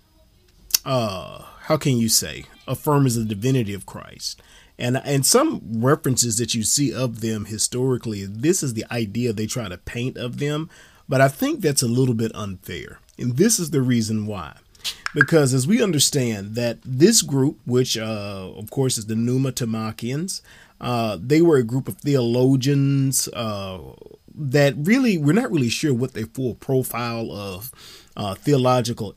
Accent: American